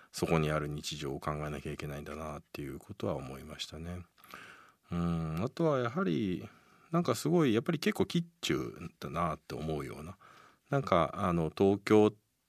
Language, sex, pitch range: Japanese, male, 75-115 Hz